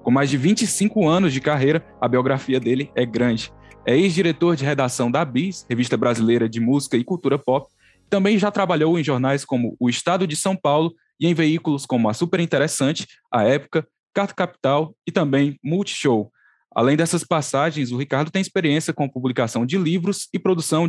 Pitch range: 130-175 Hz